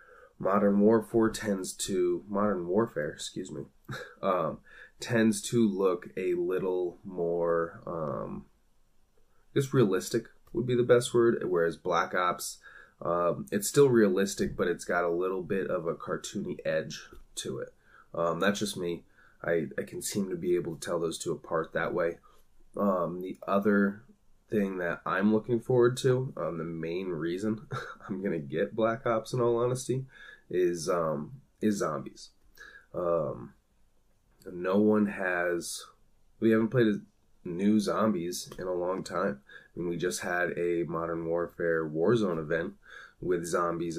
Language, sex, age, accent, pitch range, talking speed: English, male, 20-39, American, 85-115 Hz, 155 wpm